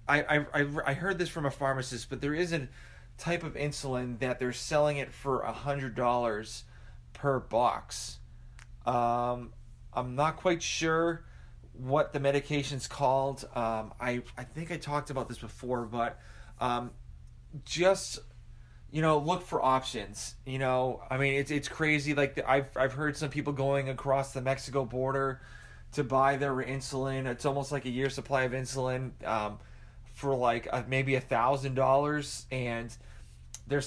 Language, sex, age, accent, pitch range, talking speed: English, male, 30-49, American, 120-140 Hz, 165 wpm